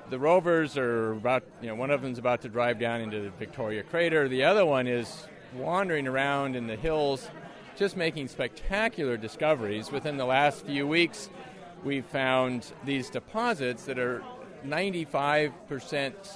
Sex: male